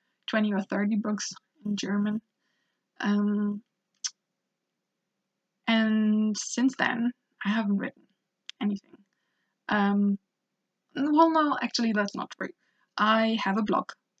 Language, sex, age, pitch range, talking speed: English, female, 20-39, 195-225 Hz, 105 wpm